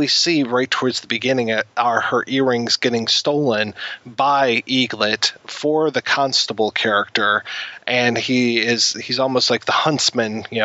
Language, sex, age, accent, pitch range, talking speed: English, male, 30-49, American, 115-140 Hz, 135 wpm